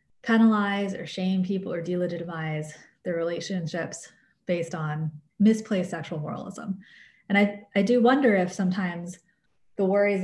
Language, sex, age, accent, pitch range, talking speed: English, female, 20-39, American, 170-210 Hz, 130 wpm